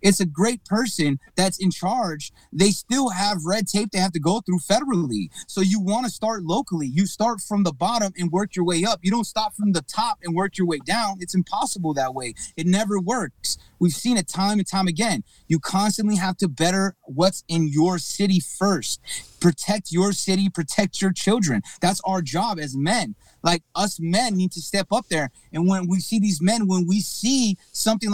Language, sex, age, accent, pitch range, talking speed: English, male, 30-49, American, 170-205 Hz, 210 wpm